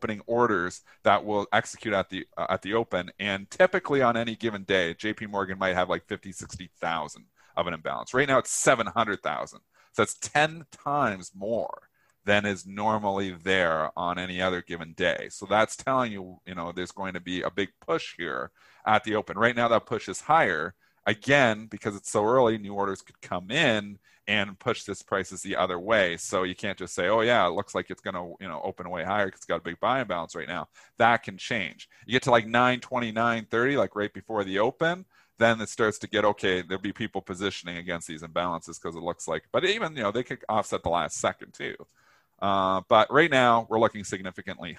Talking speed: 215 wpm